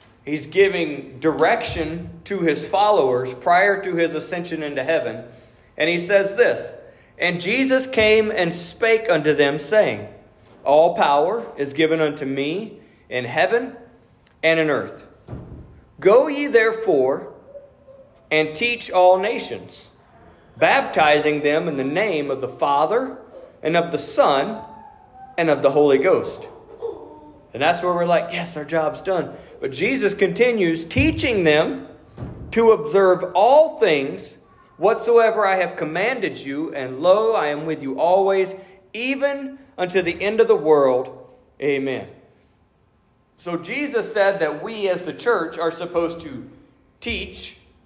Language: English